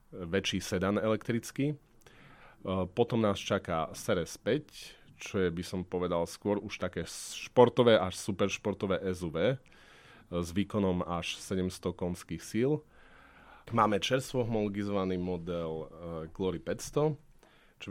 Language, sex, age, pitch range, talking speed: Slovak, male, 30-49, 90-105 Hz, 110 wpm